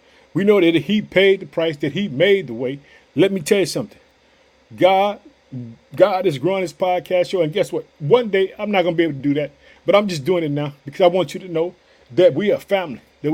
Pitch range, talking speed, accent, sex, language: 150-195 Hz, 250 wpm, American, male, English